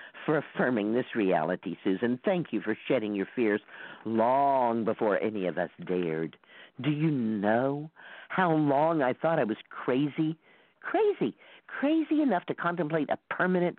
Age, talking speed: 50-69, 150 wpm